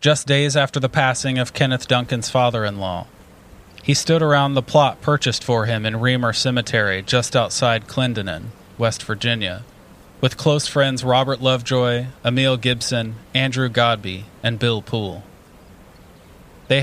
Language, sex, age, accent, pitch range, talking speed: English, male, 30-49, American, 105-130 Hz, 135 wpm